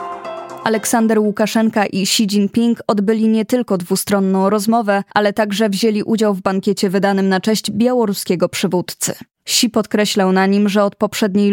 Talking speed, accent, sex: 145 wpm, native, female